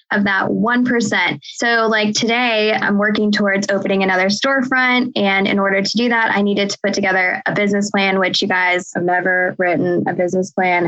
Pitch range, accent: 200-235 Hz, American